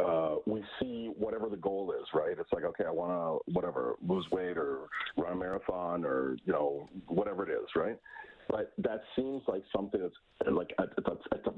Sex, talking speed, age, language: male, 195 wpm, 50-69, English